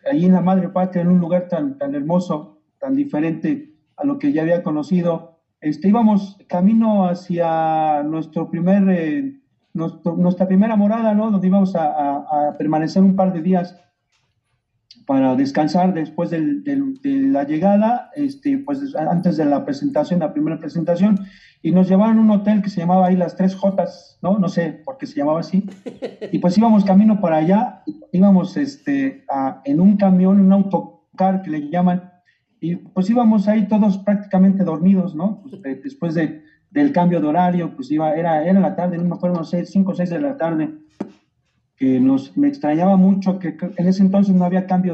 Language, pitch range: Spanish, 170-210 Hz